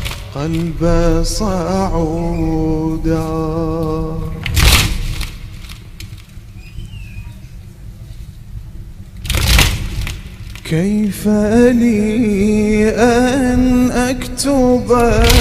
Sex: male